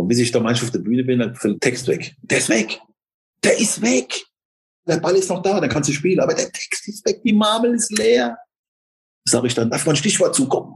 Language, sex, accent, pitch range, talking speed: German, male, German, 130-200 Hz, 250 wpm